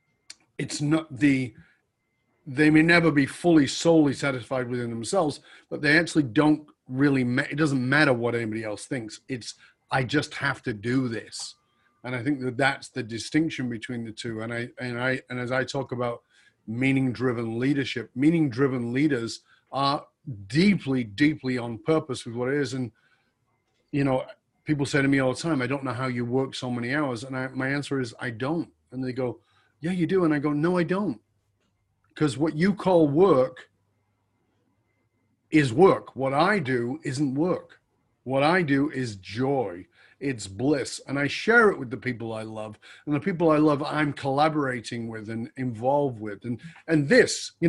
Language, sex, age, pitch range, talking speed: English, male, 40-59, 120-150 Hz, 180 wpm